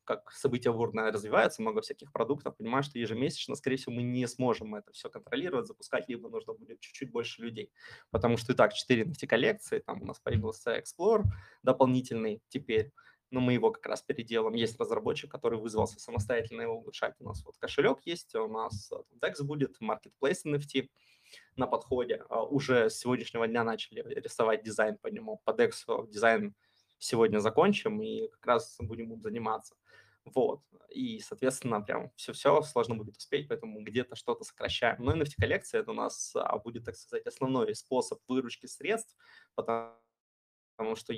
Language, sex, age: Russian, male, 20-39